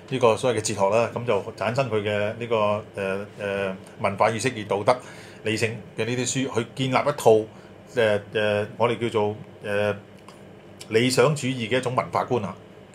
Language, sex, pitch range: Chinese, male, 105-130 Hz